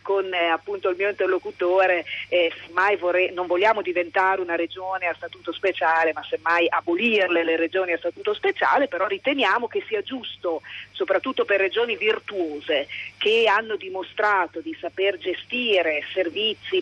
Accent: native